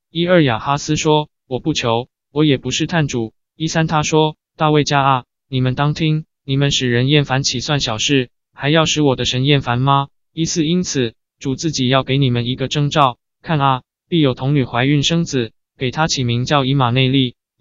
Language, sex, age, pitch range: Chinese, male, 20-39, 125-155 Hz